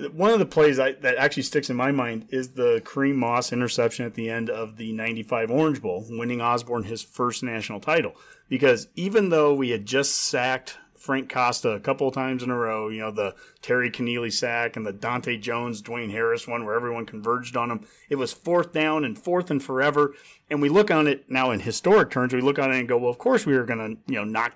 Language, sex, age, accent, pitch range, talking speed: English, male, 30-49, American, 120-160 Hz, 235 wpm